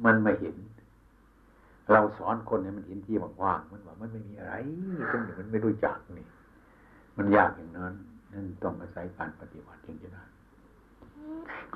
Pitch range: 90-110 Hz